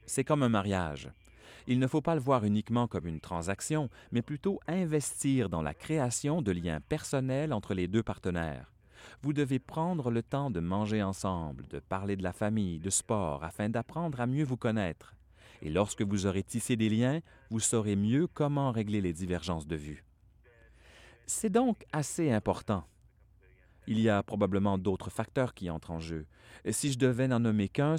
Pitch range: 95-130 Hz